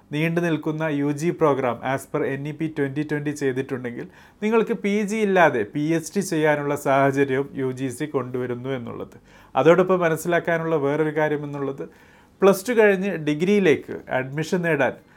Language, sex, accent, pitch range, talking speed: Malayalam, male, native, 130-170 Hz, 130 wpm